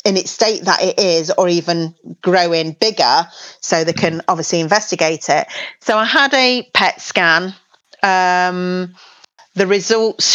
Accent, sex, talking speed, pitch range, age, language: British, female, 145 wpm, 175-210 Hz, 40-59, English